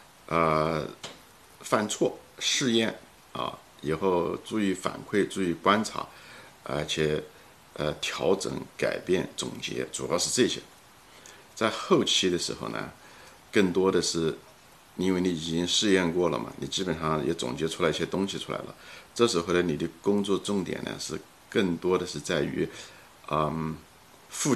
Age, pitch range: 50-69, 80-100 Hz